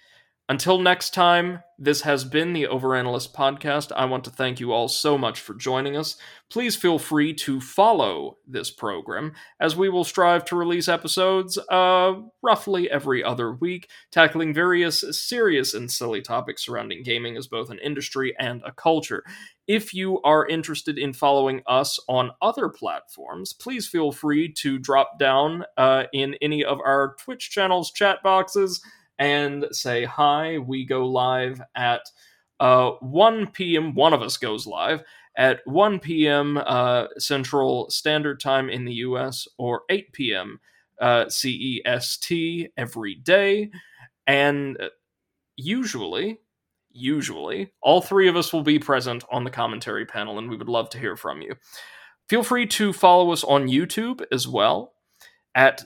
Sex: male